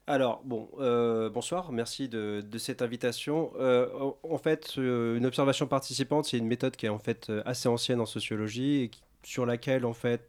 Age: 30-49